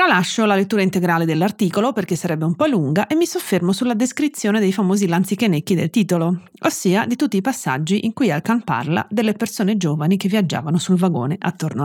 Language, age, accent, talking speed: Italian, 30-49, native, 185 wpm